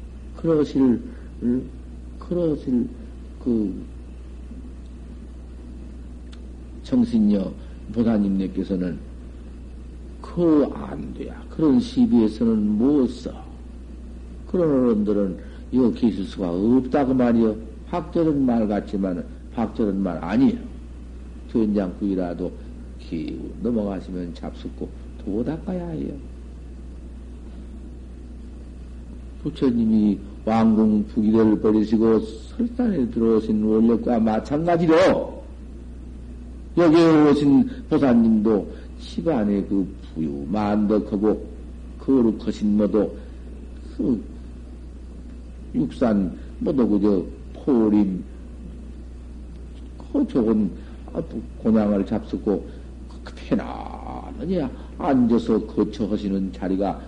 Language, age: Korean, 50-69